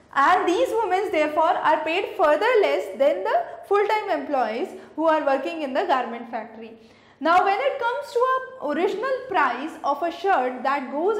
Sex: female